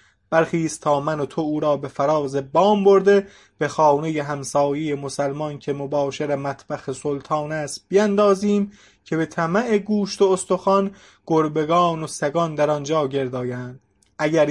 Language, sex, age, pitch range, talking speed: English, male, 30-49, 145-195 Hz, 135 wpm